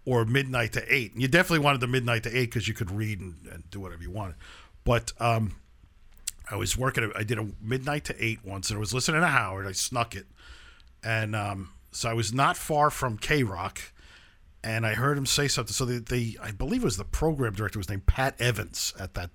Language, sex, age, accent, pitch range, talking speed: English, male, 50-69, American, 100-130 Hz, 230 wpm